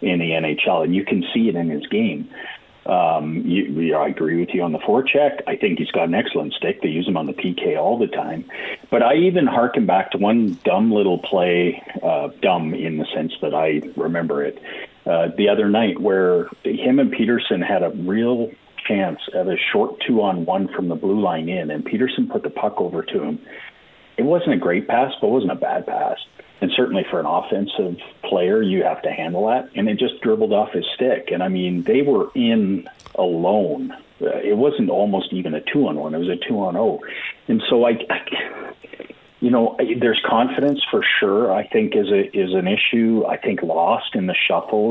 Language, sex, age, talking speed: English, male, 40-59, 200 wpm